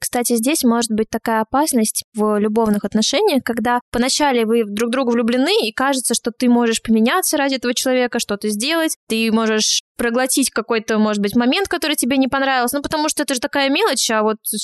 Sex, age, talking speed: female, 20-39, 195 wpm